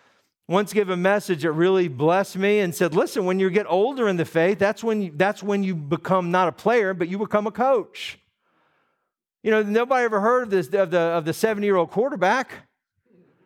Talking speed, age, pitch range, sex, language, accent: 205 wpm, 50-69, 180-245 Hz, male, English, American